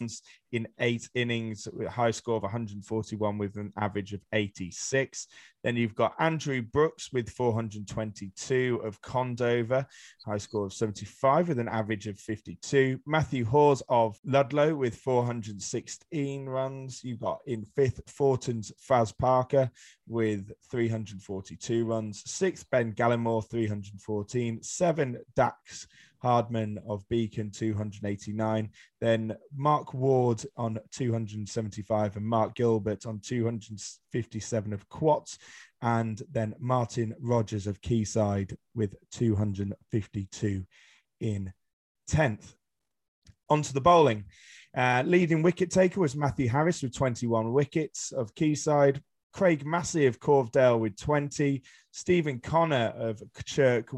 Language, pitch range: English, 105-135 Hz